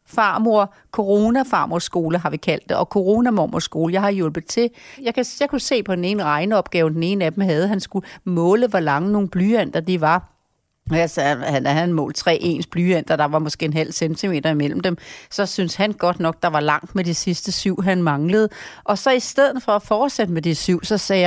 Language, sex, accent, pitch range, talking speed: Danish, female, native, 165-215 Hz, 230 wpm